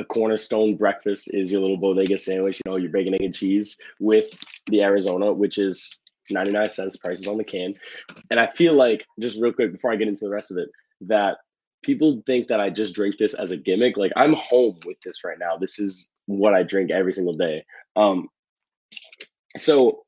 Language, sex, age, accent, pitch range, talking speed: English, male, 20-39, American, 95-115 Hz, 205 wpm